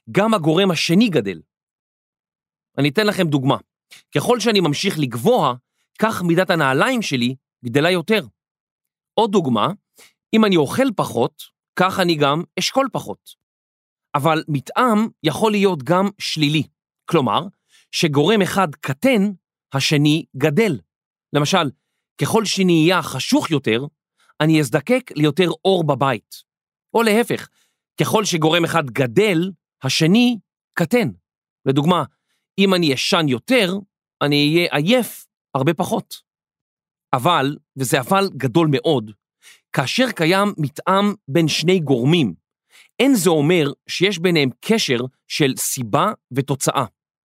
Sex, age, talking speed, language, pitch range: male, 40-59, 115 wpm, Hebrew, 140-195 Hz